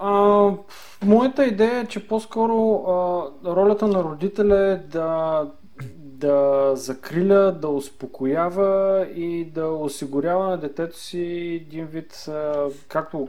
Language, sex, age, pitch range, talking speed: Bulgarian, male, 30-49, 135-170 Hz, 120 wpm